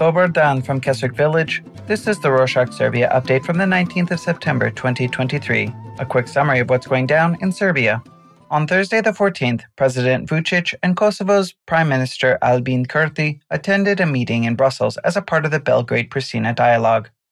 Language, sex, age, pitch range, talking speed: English, male, 30-49, 120-165 Hz, 170 wpm